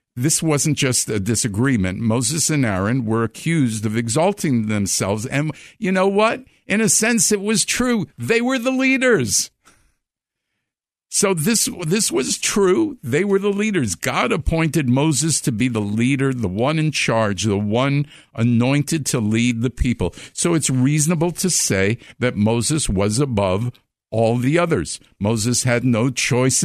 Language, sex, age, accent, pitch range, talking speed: English, male, 50-69, American, 115-155 Hz, 160 wpm